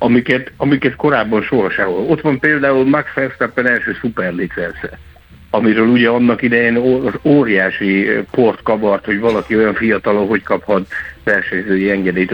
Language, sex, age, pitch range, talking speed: Hungarian, male, 60-79, 100-120 Hz, 135 wpm